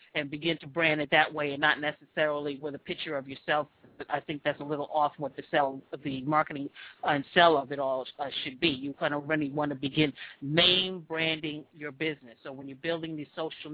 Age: 40-59